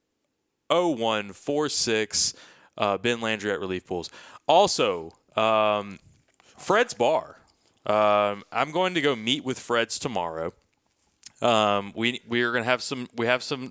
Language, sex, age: English, male, 20-39